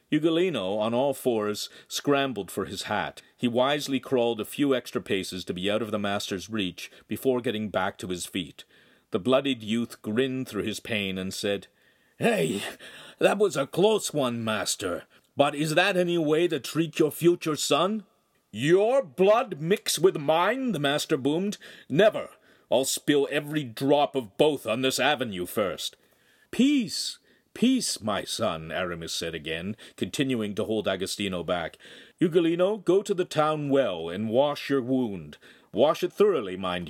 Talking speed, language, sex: 160 wpm, English, male